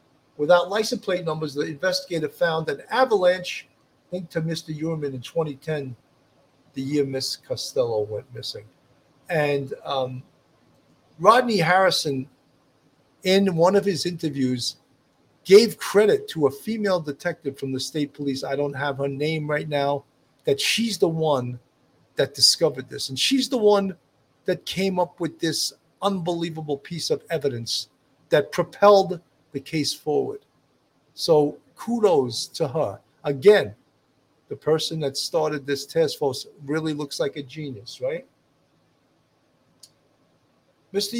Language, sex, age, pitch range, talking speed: English, male, 50-69, 140-190 Hz, 135 wpm